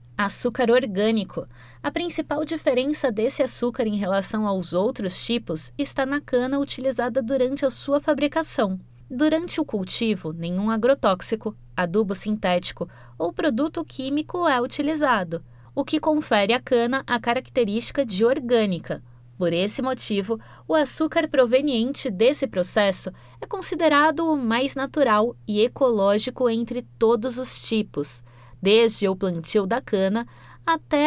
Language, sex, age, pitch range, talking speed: Portuguese, female, 20-39, 190-270 Hz, 125 wpm